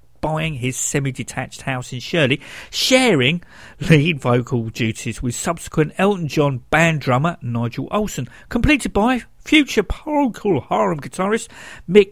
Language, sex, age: English, male, 50-69